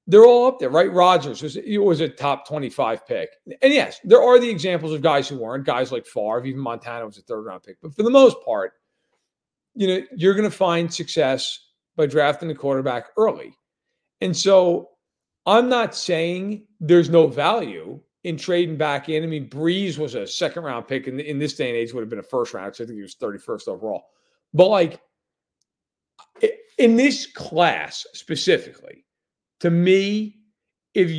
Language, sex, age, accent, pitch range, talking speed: English, male, 40-59, American, 145-210 Hz, 180 wpm